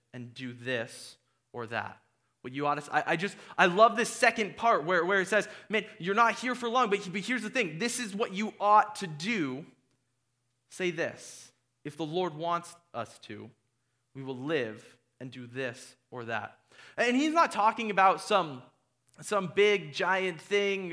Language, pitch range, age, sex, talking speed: English, 130-200 Hz, 20-39, male, 180 wpm